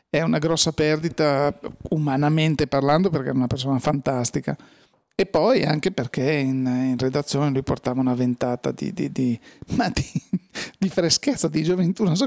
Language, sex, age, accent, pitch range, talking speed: Italian, male, 40-59, native, 140-170 Hz, 155 wpm